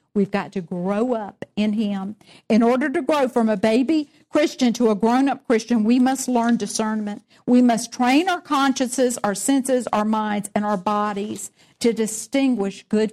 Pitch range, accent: 205-260 Hz, American